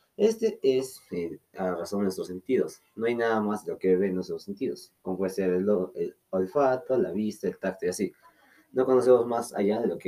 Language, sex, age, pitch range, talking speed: English, male, 20-39, 95-130 Hz, 215 wpm